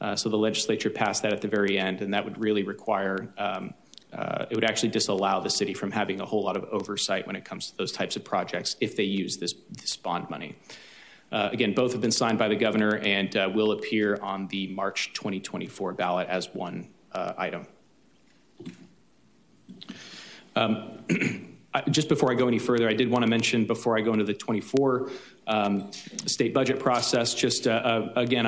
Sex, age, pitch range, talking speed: male, 30-49, 105-120 Hz, 195 wpm